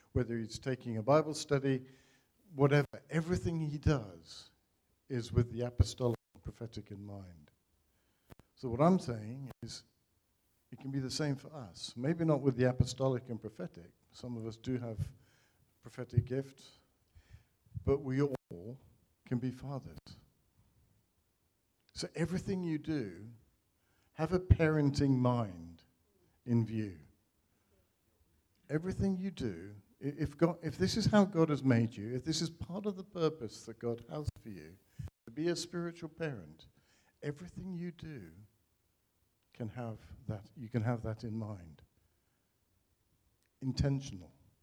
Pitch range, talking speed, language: 105-135 Hz, 140 wpm, English